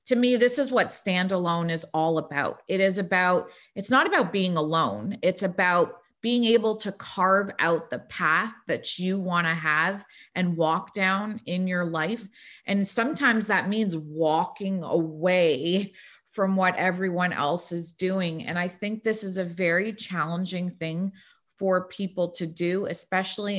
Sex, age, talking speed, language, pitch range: female, 30-49, 160 wpm, English, 175-210 Hz